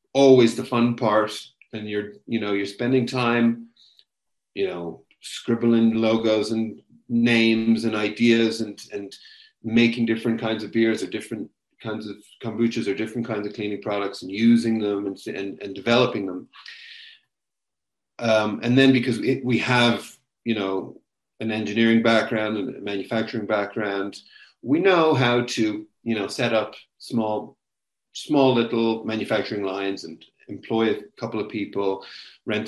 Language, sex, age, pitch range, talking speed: English, male, 40-59, 105-120 Hz, 145 wpm